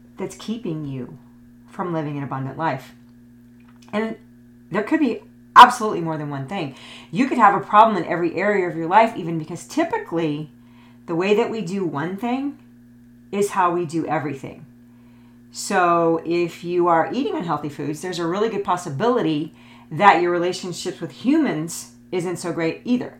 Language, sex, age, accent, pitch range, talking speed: English, female, 40-59, American, 120-190 Hz, 165 wpm